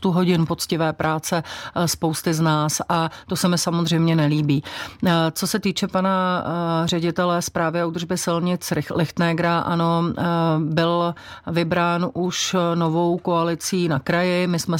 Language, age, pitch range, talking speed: Czech, 40-59, 160-175 Hz, 130 wpm